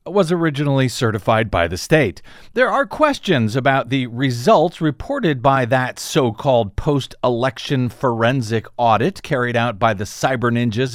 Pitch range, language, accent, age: 115-160 Hz, English, American, 50-69